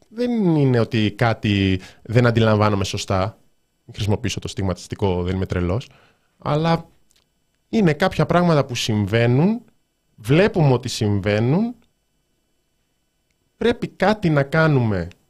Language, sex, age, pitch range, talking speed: Greek, male, 20-39, 105-160 Hz, 100 wpm